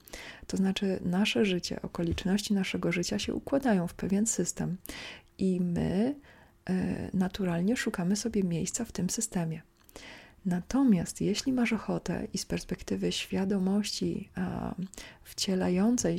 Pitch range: 180-205 Hz